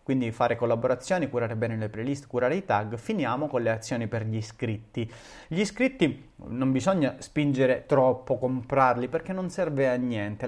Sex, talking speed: male, 165 wpm